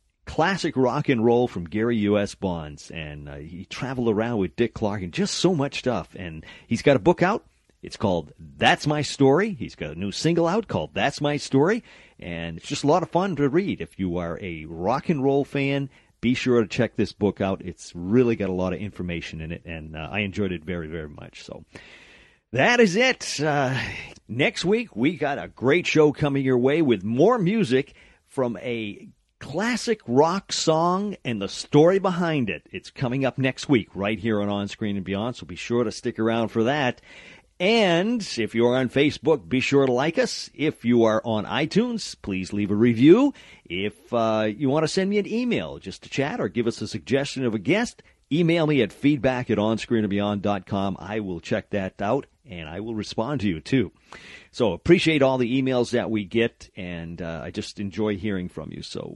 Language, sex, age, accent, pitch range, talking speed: English, male, 40-59, American, 100-150 Hz, 210 wpm